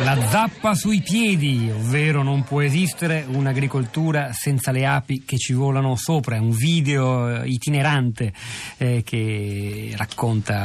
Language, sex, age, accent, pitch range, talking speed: Italian, male, 40-59, native, 115-140 Hz, 130 wpm